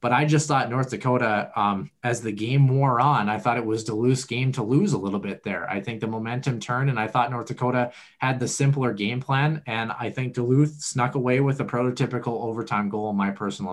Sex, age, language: male, 20-39, English